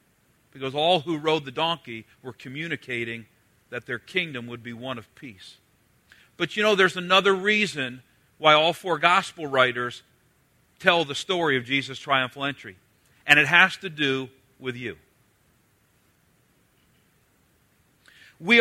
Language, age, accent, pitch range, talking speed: English, 50-69, American, 130-190 Hz, 135 wpm